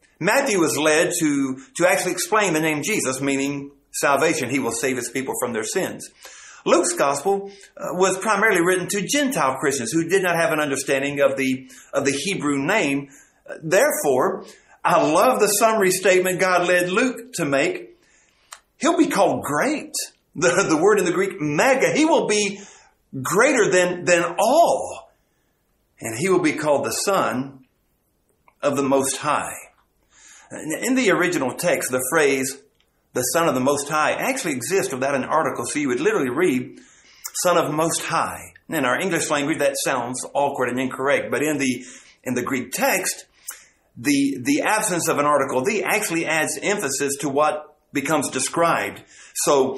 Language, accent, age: English, American, 50-69